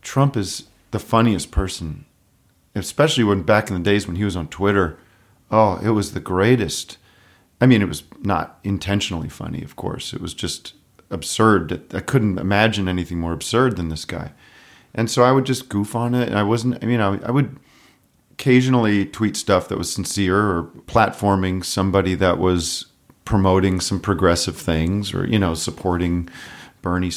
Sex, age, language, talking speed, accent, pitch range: male, 40-59, English, 175 wpm, American, 90-115 Hz